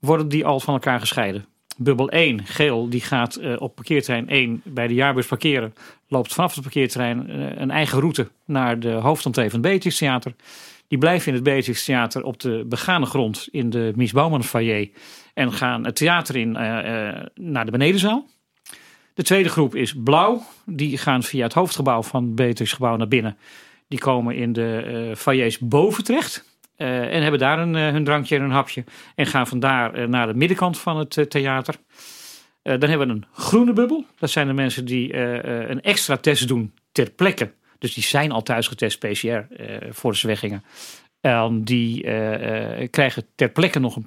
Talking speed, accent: 175 wpm, Dutch